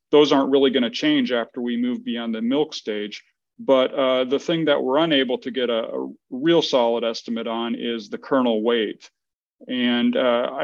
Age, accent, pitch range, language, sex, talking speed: 40-59, American, 125-155 Hz, English, male, 185 wpm